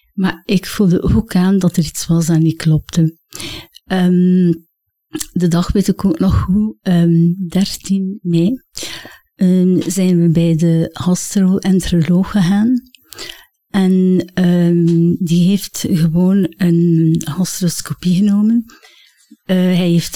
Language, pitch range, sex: Dutch, 170-195 Hz, female